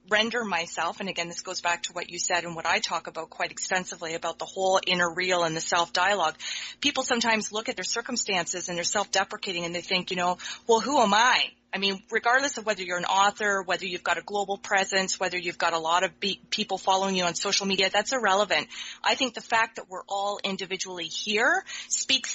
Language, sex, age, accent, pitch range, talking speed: English, female, 30-49, American, 180-220 Hz, 225 wpm